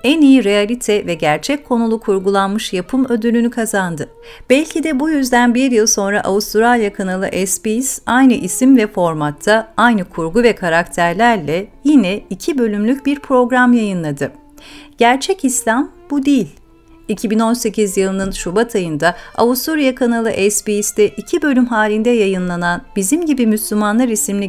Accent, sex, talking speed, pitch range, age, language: native, female, 130 wpm, 185-255 Hz, 50-69, Turkish